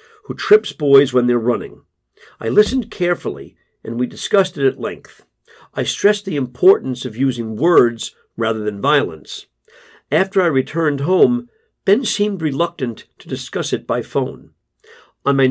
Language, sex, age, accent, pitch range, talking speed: English, male, 50-69, American, 135-210 Hz, 150 wpm